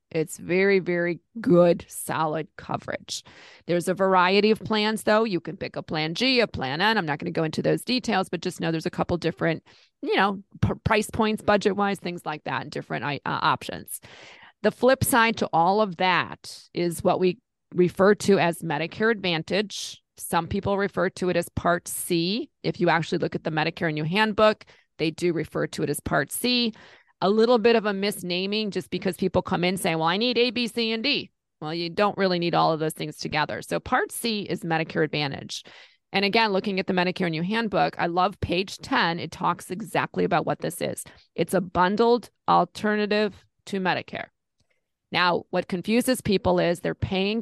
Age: 40-59